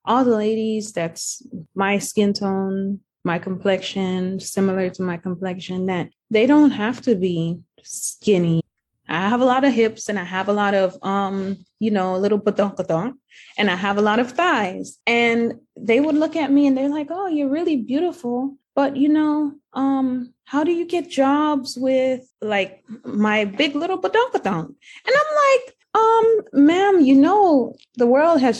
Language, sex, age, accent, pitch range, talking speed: English, female, 20-39, American, 195-270 Hz, 170 wpm